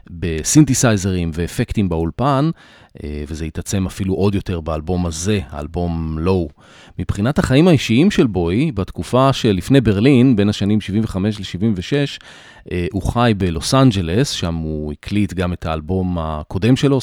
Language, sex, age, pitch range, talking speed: Hebrew, male, 30-49, 90-120 Hz, 125 wpm